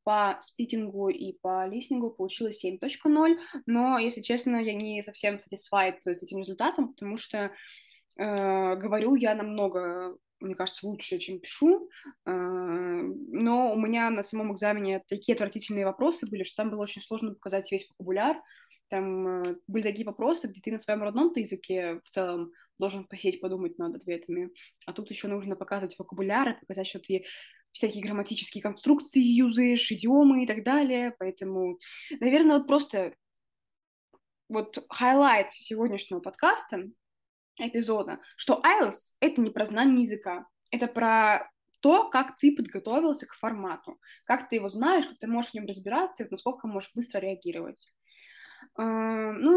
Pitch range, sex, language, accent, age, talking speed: 195-250 Hz, female, Russian, native, 20-39, 145 wpm